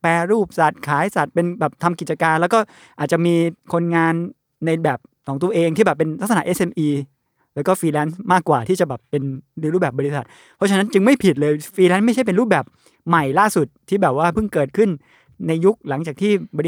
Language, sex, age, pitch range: Thai, male, 20-39, 145-185 Hz